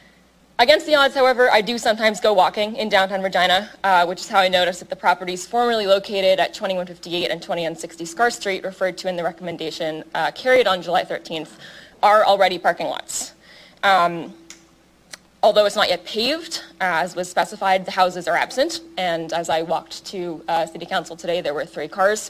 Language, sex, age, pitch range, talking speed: English, female, 20-39, 170-200 Hz, 185 wpm